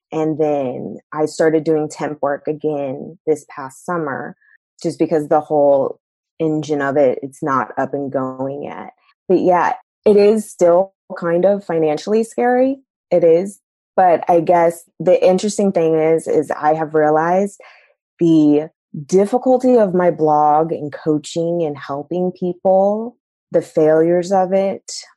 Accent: American